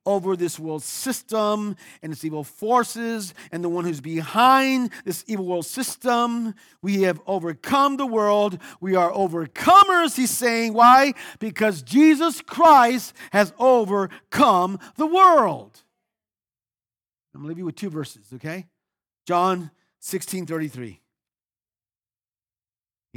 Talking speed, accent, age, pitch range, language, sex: 125 wpm, American, 50-69, 175-250 Hz, English, male